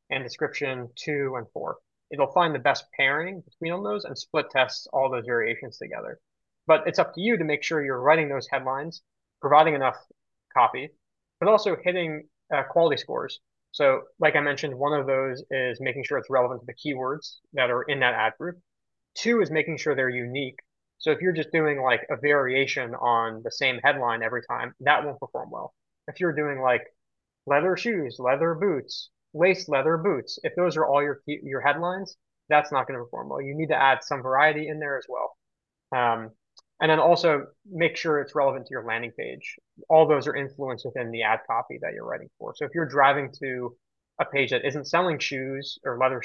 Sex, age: male, 20-39